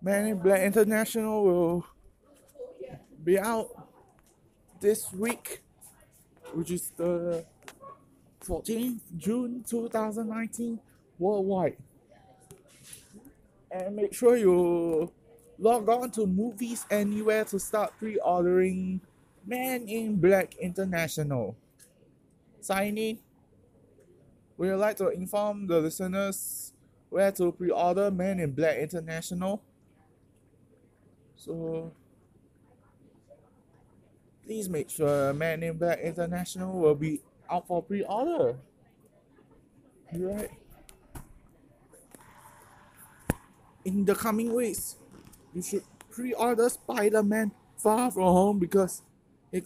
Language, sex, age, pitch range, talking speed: English, male, 20-39, 165-210 Hz, 95 wpm